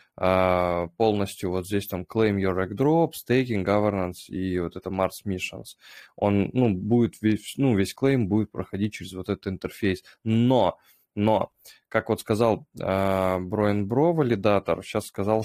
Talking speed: 145 wpm